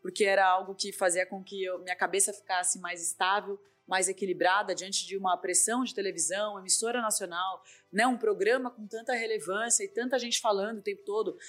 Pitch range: 190-240 Hz